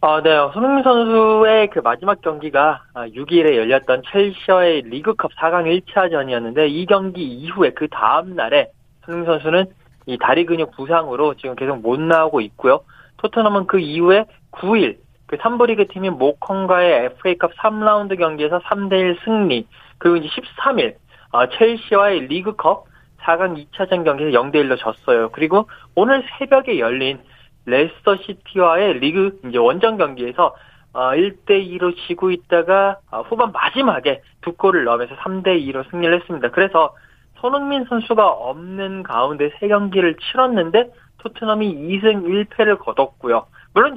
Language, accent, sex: Korean, native, male